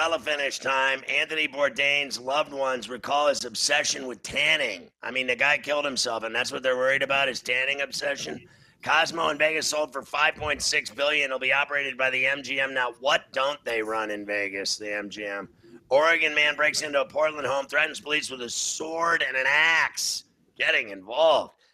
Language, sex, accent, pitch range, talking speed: English, male, American, 135-155 Hz, 180 wpm